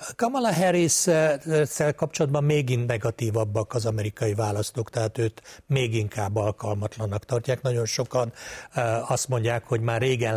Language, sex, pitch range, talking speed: Hungarian, male, 110-130 Hz, 120 wpm